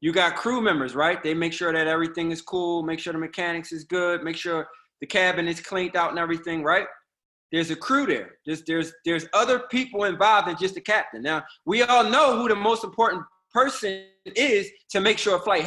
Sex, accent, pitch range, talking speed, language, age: male, American, 160-200 Hz, 215 wpm, English, 20-39